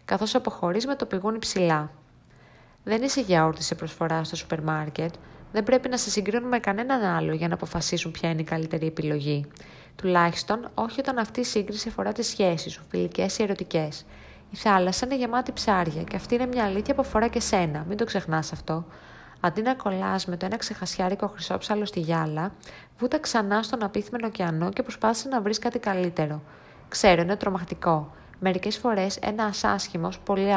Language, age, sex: Greek, 20-39, female